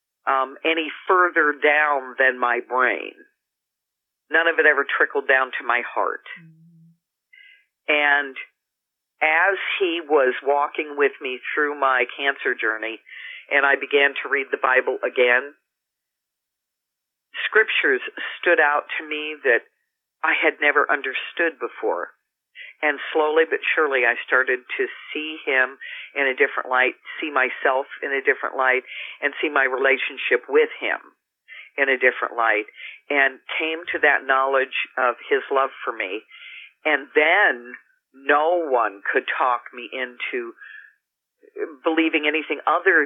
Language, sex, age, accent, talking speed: English, female, 50-69, American, 135 wpm